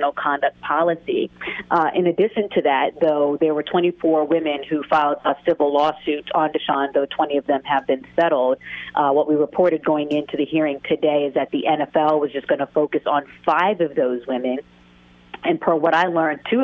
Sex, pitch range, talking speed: female, 145-160 Hz, 200 wpm